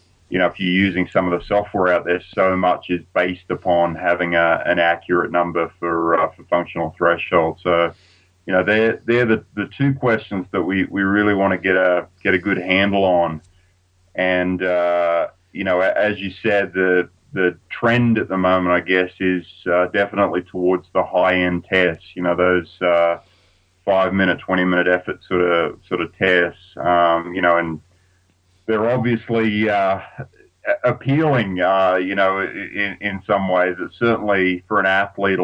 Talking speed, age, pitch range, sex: 175 wpm, 30-49, 90-95 Hz, male